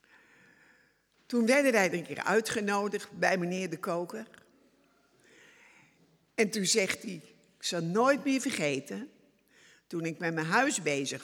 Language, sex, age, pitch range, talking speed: Dutch, female, 60-79, 165-245 Hz, 140 wpm